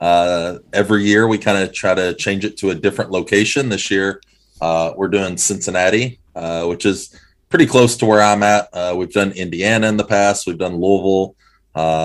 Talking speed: 200 wpm